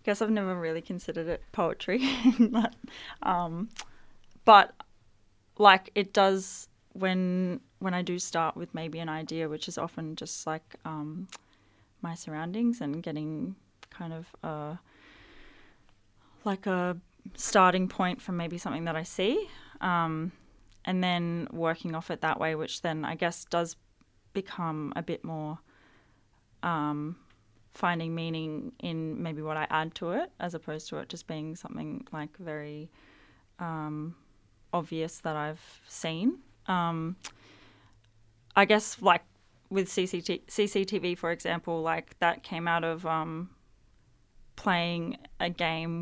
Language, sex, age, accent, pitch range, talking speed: English, female, 20-39, Australian, 150-180 Hz, 135 wpm